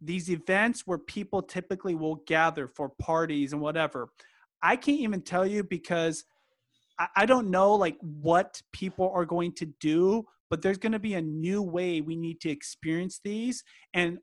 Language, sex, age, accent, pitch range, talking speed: English, male, 30-49, American, 160-195 Hz, 170 wpm